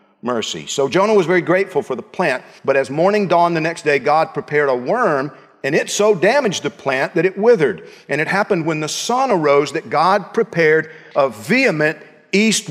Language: English